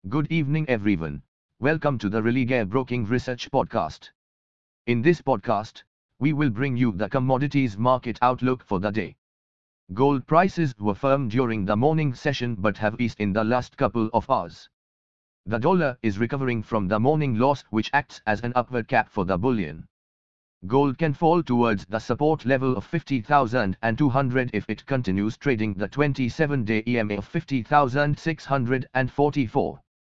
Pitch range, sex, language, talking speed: 110-140 Hz, male, English, 150 wpm